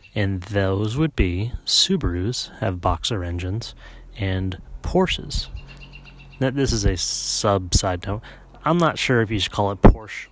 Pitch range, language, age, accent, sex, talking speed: 90-110 Hz, English, 30-49, American, male, 145 wpm